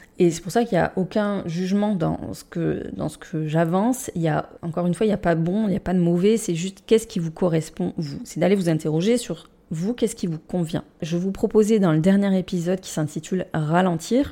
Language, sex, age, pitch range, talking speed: French, female, 20-39, 175-225 Hz, 260 wpm